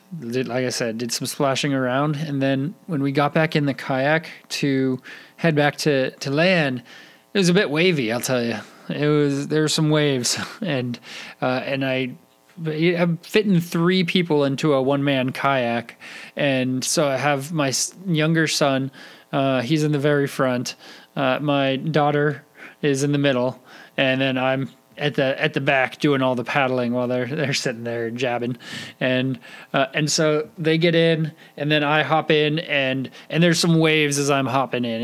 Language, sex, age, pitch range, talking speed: English, male, 20-39, 130-155 Hz, 185 wpm